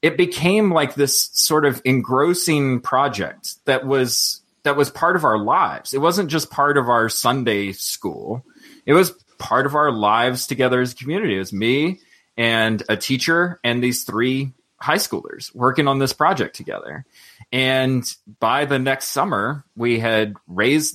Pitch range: 110-135 Hz